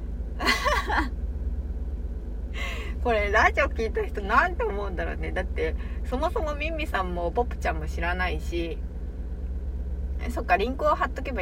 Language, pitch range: Japanese, 70-80 Hz